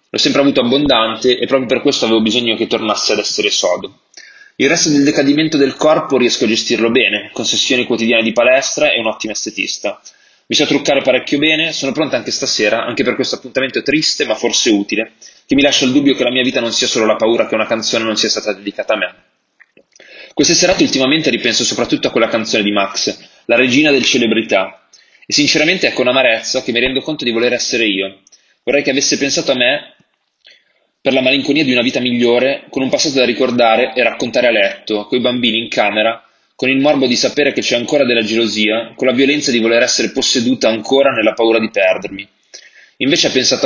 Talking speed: 210 wpm